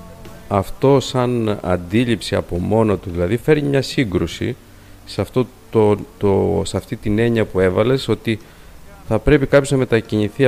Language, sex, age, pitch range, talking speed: Greek, male, 50-69, 90-120 Hz, 150 wpm